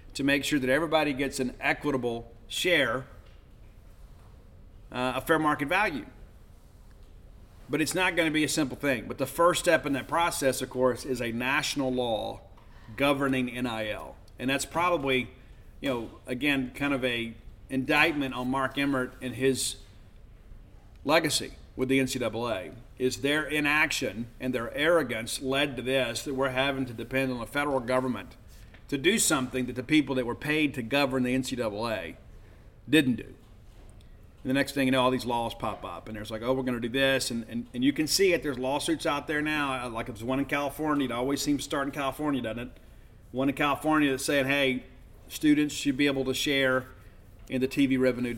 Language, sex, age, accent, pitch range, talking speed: English, male, 40-59, American, 115-145 Hz, 190 wpm